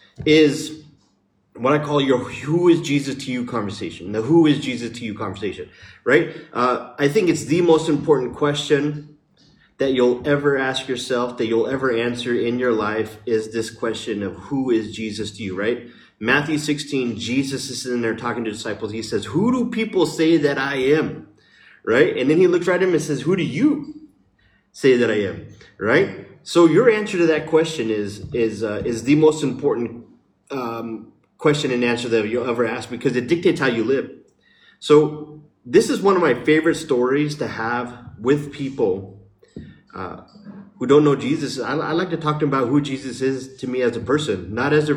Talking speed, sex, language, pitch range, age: 195 wpm, male, English, 115-150 Hz, 30-49